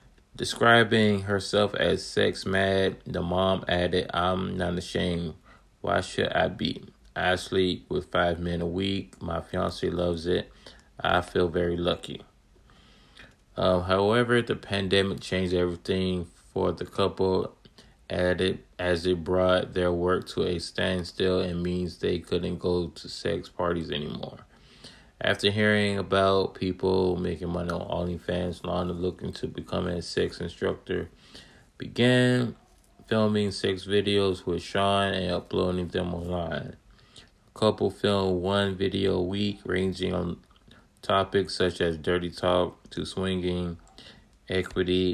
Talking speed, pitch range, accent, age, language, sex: 130 wpm, 90-95 Hz, American, 20-39, English, male